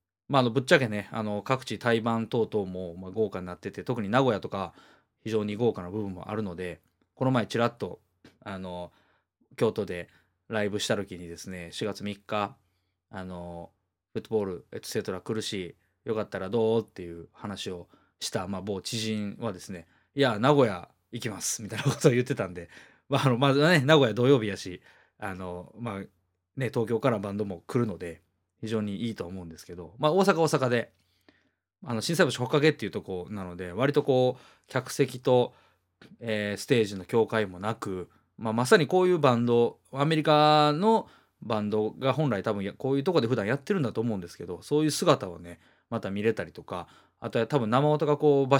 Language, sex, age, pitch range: Japanese, male, 20-39, 95-130 Hz